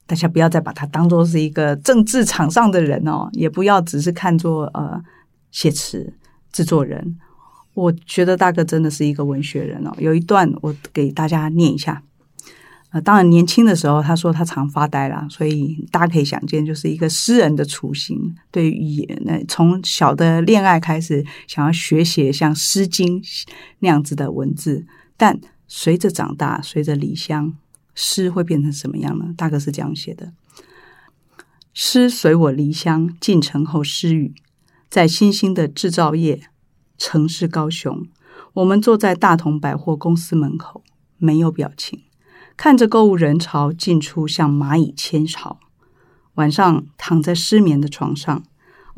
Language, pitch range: Chinese, 150-175 Hz